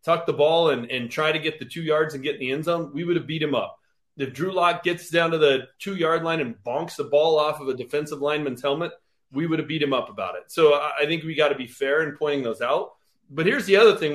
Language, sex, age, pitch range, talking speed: English, male, 30-49, 145-195 Hz, 285 wpm